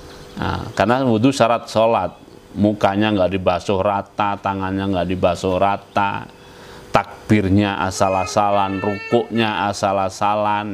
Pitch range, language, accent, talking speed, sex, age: 95-115 Hz, Indonesian, native, 95 wpm, male, 30-49